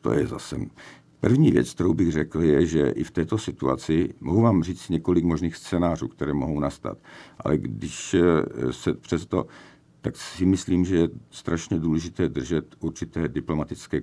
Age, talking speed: 50-69, 160 wpm